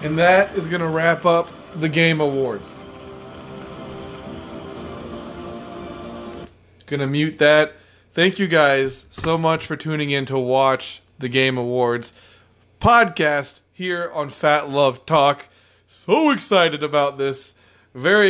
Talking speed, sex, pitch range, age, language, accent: 125 wpm, male, 135-175 Hz, 20-39, English, American